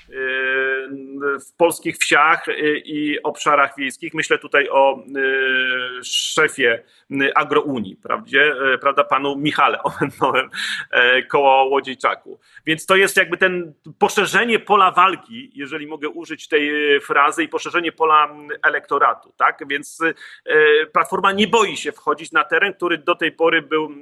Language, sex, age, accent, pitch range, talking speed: Polish, male, 40-59, native, 140-185 Hz, 120 wpm